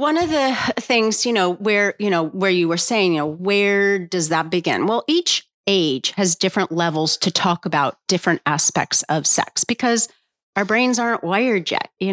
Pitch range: 180-235 Hz